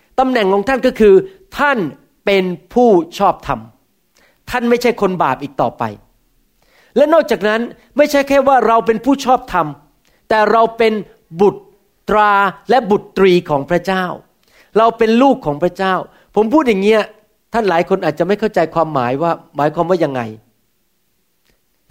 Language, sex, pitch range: Thai, male, 180-255 Hz